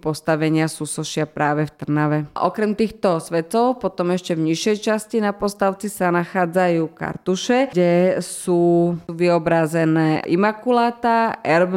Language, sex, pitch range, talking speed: Slovak, female, 160-185 Hz, 115 wpm